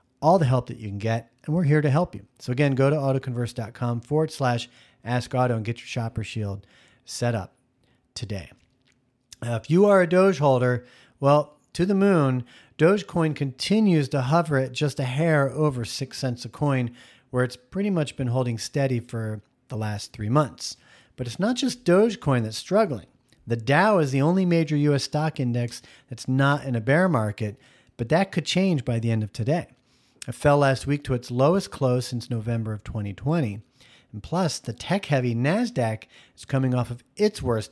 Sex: male